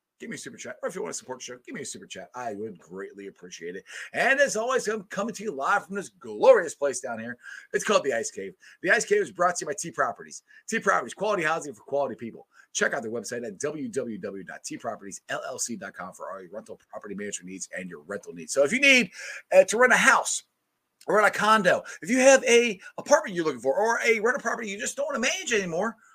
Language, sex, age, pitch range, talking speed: English, male, 30-49, 155-235 Hz, 245 wpm